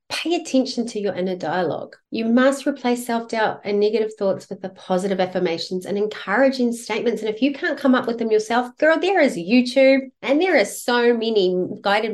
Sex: female